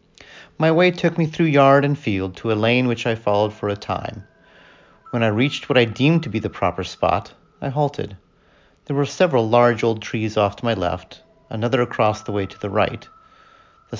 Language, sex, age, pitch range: English, male, 40-59, 105-135 Hz